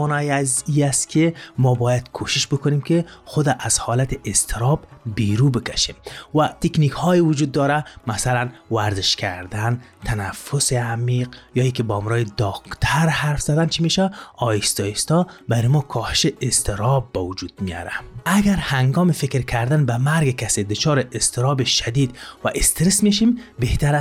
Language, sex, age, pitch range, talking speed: Persian, male, 30-49, 110-150 Hz, 140 wpm